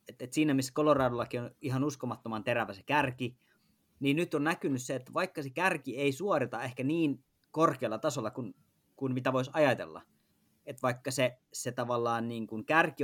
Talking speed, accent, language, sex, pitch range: 175 wpm, native, Finnish, male, 120-145 Hz